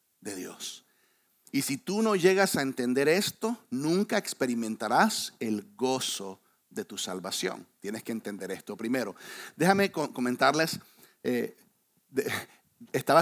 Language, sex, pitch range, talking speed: English, male, 135-180 Hz, 125 wpm